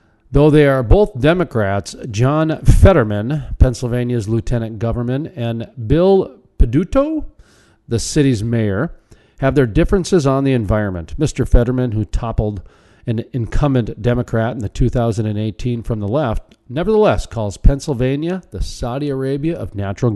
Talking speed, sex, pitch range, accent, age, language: 130 wpm, male, 110-145 Hz, American, 40-59, English